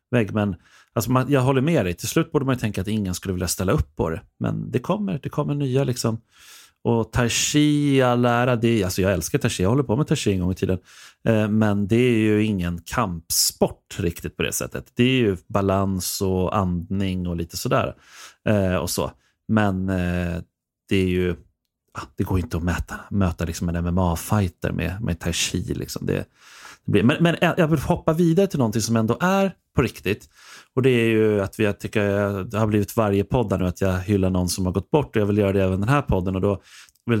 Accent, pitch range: native, 95-120 Hz